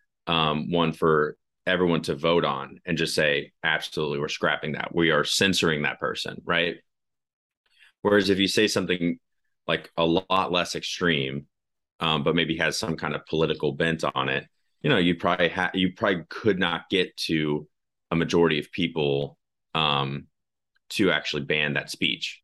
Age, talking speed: 30-49, 165 wpm